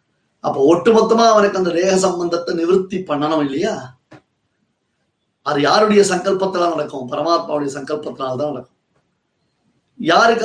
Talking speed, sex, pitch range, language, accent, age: 100 wpm, male, 155-200 Hz, Tamil, native, 30-49